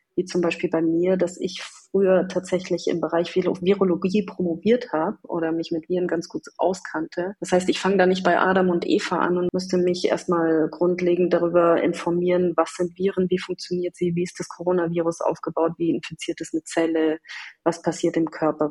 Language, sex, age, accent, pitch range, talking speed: German, female, 30-49, German, 160-180 Hz, 190 wpm